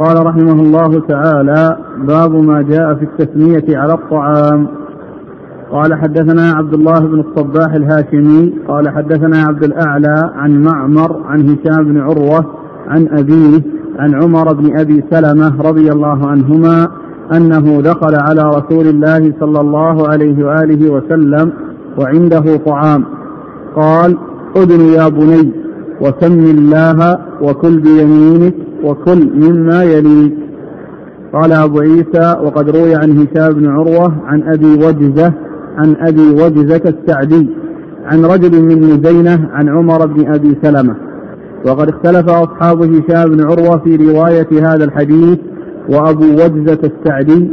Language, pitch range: Arabic, 150-165 Hz